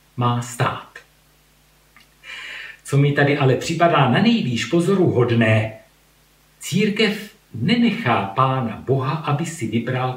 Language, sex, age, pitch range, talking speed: Slovak, male, 50-69, 120-170 Hz, 105 wpm